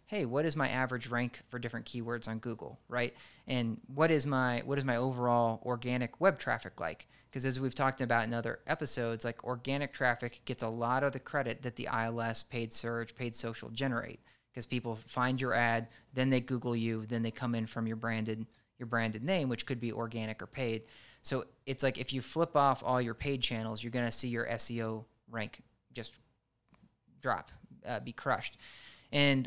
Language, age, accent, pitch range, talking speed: English, 20-39, American, 115-130 Hz, 200 wpm